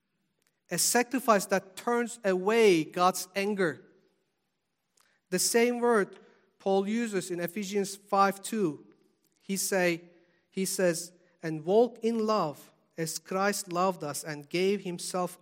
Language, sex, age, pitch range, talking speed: English, male, 50-69, 170-215 Hz, 115 wpm